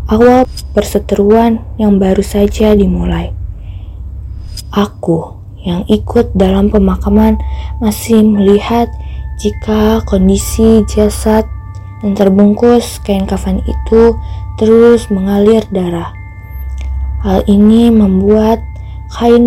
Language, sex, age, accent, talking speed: Indonesian, female, 20-39, native, 85 wpm